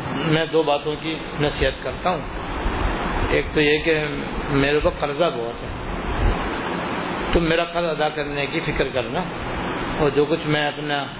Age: 60-79